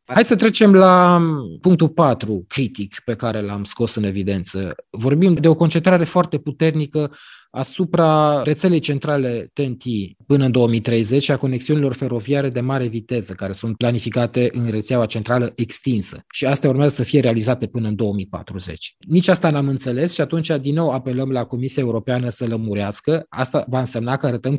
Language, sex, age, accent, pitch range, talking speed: Romanian, male, 20-39, native, 100-135 Hz, 165 wpm